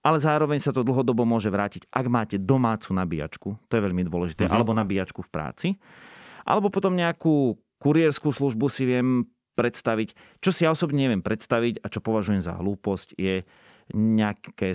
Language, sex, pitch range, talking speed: Slovak, male, 95-130 Hz, 165 wpm